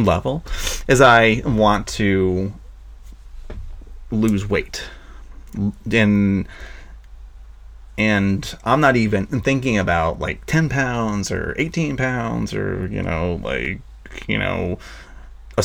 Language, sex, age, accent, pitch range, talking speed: English, male, 30-49, American, 65-105 Hz, 105 wpm